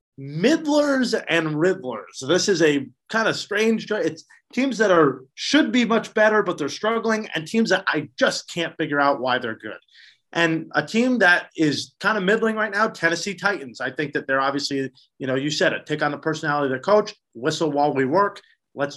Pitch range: 145-200 Hz